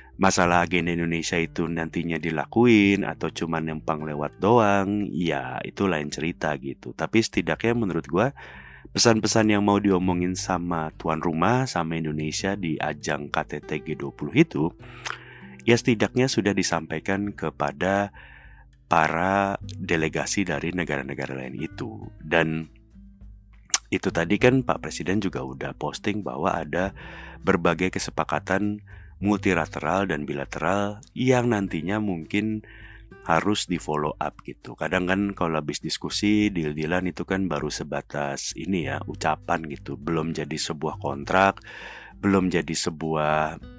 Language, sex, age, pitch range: Indonesian, male, 30-49, 80-100 Hz